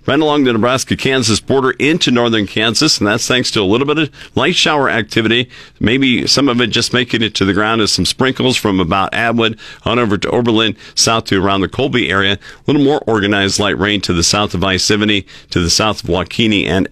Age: 50-69